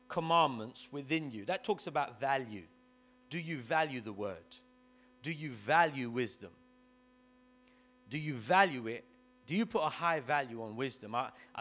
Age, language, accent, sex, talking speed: 30-49, English, British, male, 150 wpm